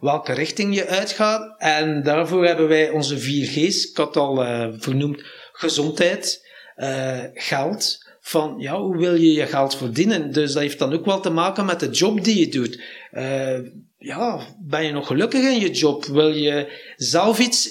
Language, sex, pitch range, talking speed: Dutch, male, 150-175 Hz, 185 wpm